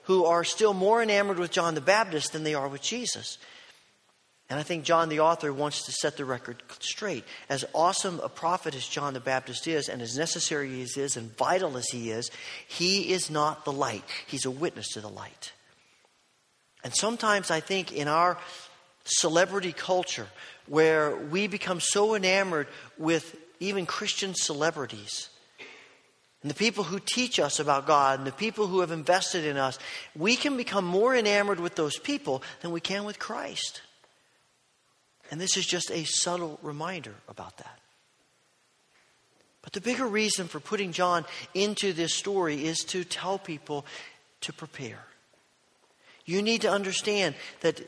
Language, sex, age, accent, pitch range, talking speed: English, male, 40-59, American, 145-195 Hz, 165 wpm